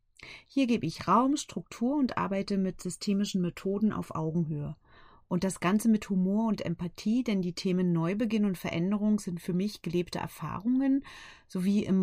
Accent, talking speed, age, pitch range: German, 160 wpm, 40-59, 170-220 Hz